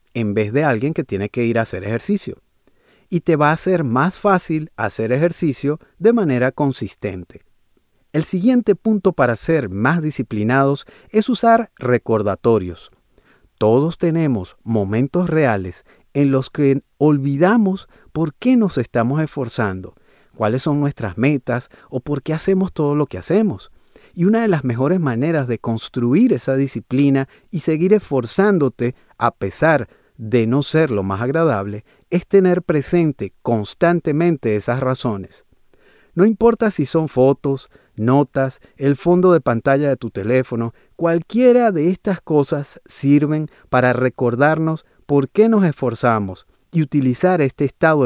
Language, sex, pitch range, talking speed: Spanish, male, 120-170 Hz, 140 wpm